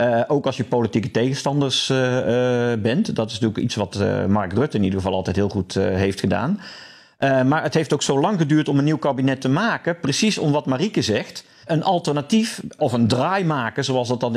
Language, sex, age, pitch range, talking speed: Dutch, male, 50-69, 120-165 Hz, 225 wpm